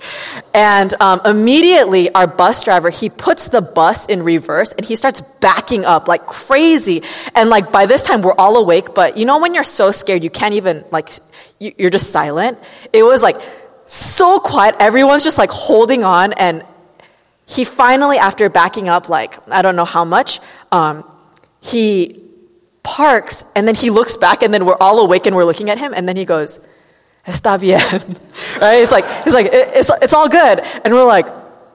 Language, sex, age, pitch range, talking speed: English, female, 20-39, 180-255 Hz, 185 wpm